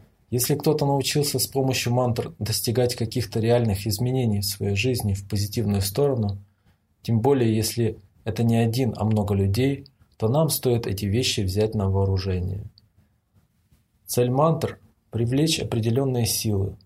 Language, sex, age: English, male, 20-39